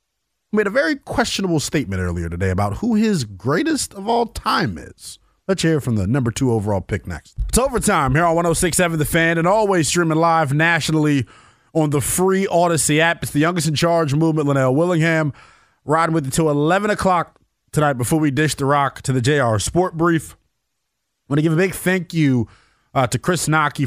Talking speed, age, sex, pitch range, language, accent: 195 wpm, 20-39, male, 115-155 Hz, English, American